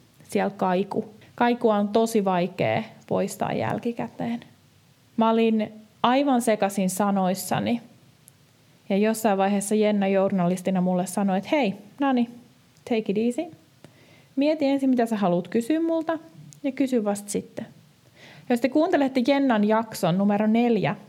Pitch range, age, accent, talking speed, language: 195-250 Hz, 20-39, native, 125 wpm, Finnish